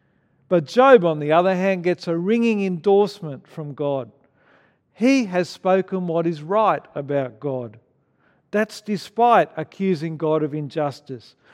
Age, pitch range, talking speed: 50-69, 150-195 Hz, 135 wpm